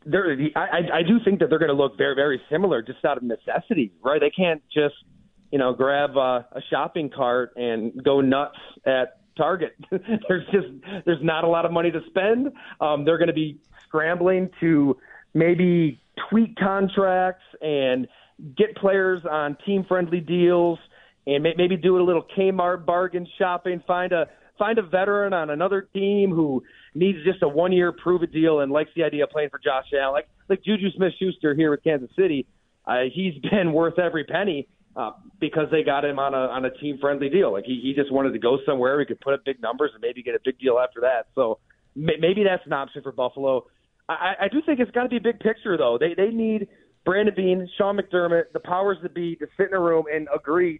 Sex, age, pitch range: male, 30-49, 145-190 Hz